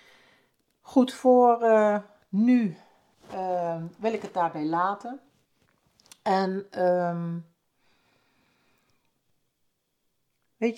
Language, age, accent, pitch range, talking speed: Dutch, 50-69, Dutch, 150-195 Hz, 70 wpm